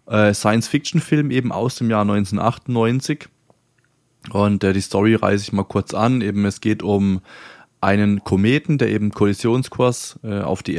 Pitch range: 100-125 Hz